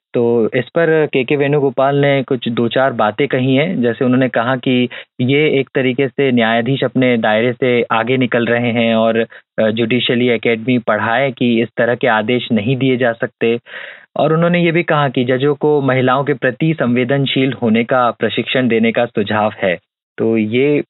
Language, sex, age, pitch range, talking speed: Hindi, male, 30-49, 120-140 Hz, 180 wpm